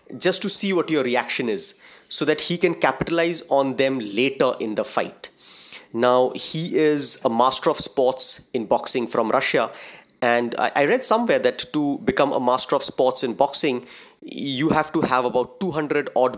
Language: English